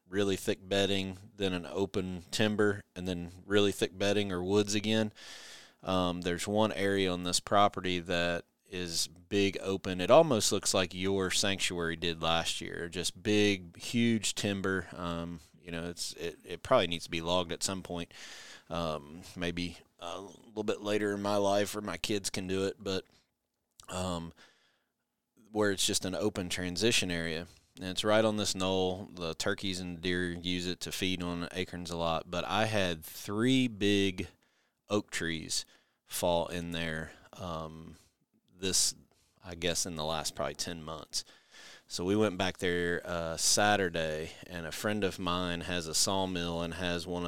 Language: English